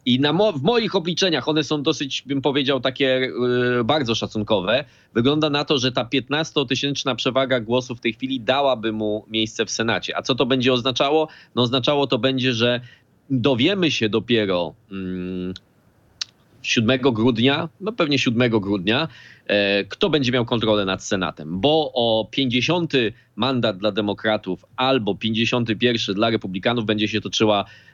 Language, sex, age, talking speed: Polish, male, 20-39, 150 wpm